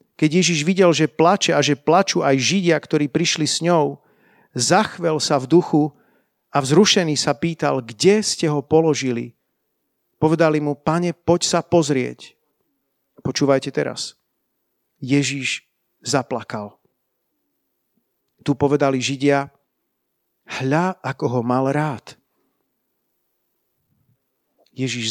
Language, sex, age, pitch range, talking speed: Slovak, male, 50-69, 140-175 Hz, 110 wpm